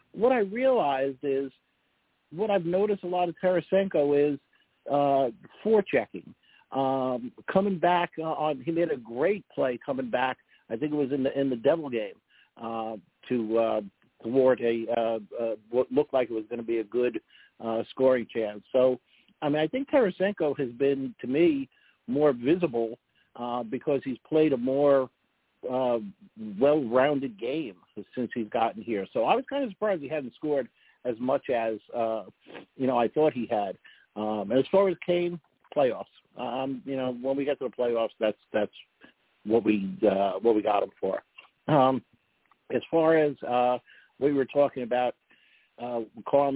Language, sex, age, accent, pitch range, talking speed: English, male, 50-69, American, 120-150 Hz, 175 wpm